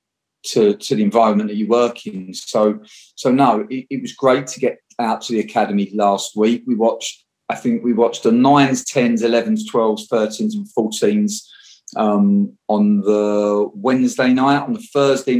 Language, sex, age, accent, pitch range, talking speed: English, male, 40-59, British, 105-145 Hz, 175 wpm